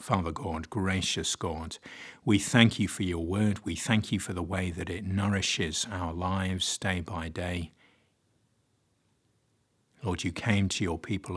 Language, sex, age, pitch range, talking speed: English, male, 50-69, 90-110 Hz, 160 wpm